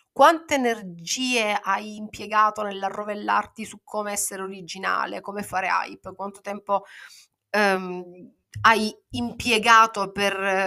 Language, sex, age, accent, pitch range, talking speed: Italian, female, 30-49, native, 175-215 Hz, 95 wpm